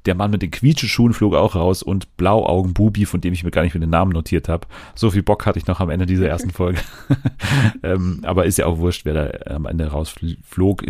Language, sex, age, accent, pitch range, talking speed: German, male, 40-59, German, 85-105 Hz, 235 wpm